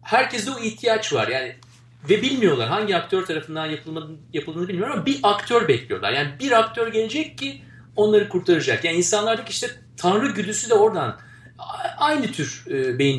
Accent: native